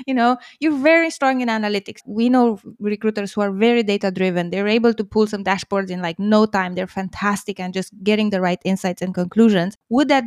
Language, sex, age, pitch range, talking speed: English, female, 20-39, 190-240 Hz, 210 wpm